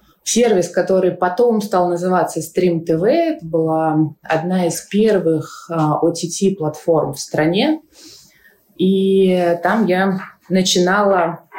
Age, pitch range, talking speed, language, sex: 20-39, 160-200 Hz, 95 wpm, Russian, female